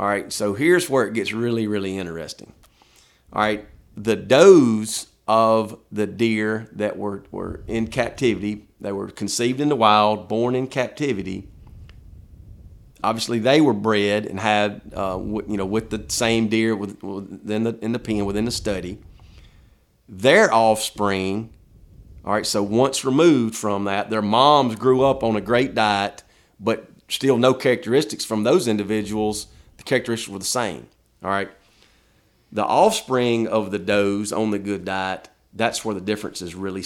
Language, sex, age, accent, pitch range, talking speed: English, male, 40-59, American, 100-115 Hz, 155 wpm